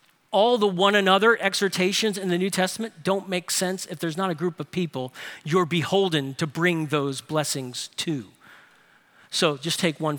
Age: 40-59